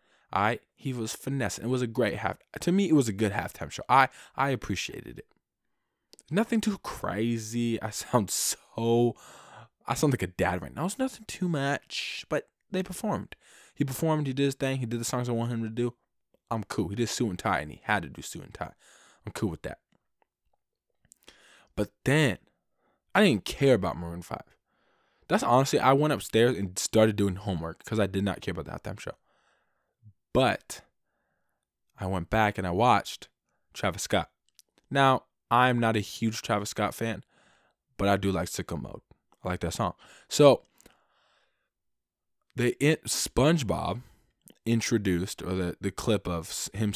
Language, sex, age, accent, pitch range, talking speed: English, male, 20-39, American, 100-125 Hz, 180 wpm